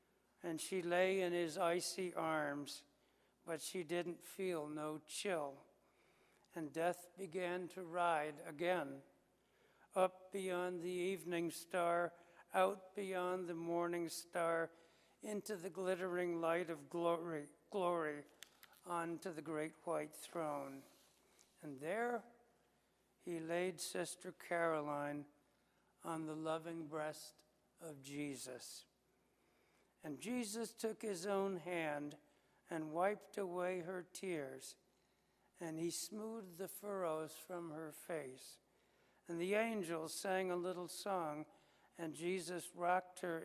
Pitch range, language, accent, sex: 155-185 Hz, English, American, male